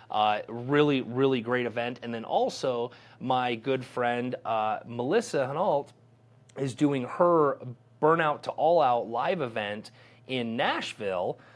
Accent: American